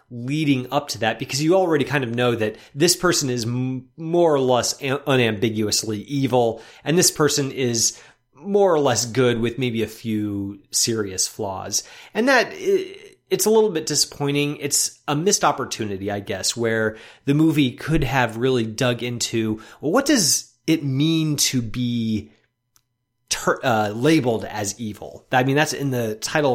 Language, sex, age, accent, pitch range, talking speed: English, male, 30-49, American, 115-150 Hz, 165 wpm